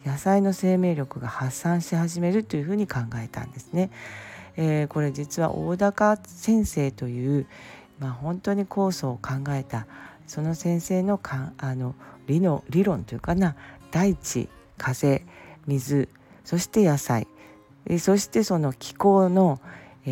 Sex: female